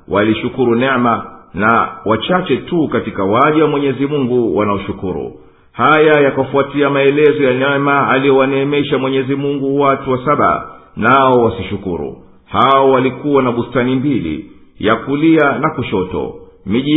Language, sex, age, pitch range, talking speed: English, male, 50-69, 115-140 Hz, 130 wpm